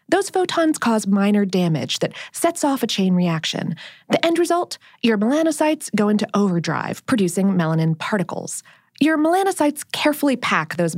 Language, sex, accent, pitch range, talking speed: English, female, American, 185-295 Hz, 150 wpm